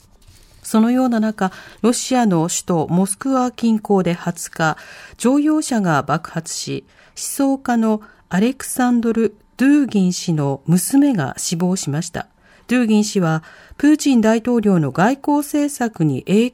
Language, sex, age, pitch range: Japanese, female, 40-59, 175-255 Hz